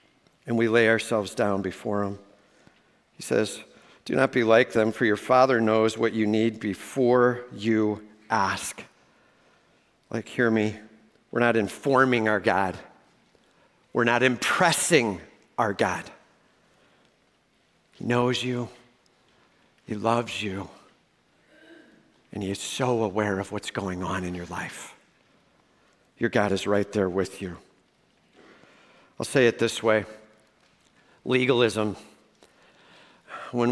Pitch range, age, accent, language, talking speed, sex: 110-170 Hz, 50-69, American, English, 125 wpm, male